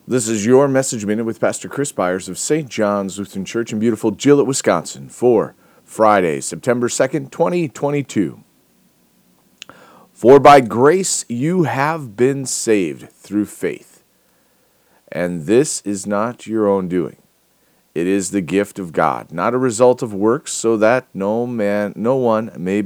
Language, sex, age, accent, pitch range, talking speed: English, male, 40-59, American, 95-130 Hz, 150 wpm